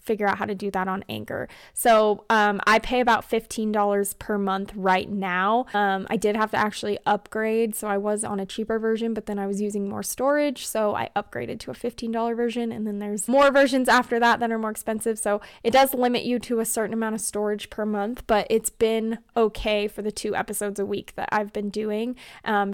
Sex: female